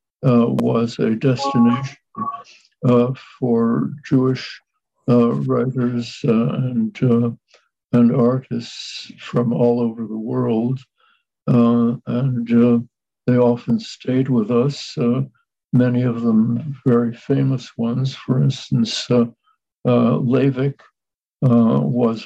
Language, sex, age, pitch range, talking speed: English, male, 60-79, 115-130 Hz, 110 wpm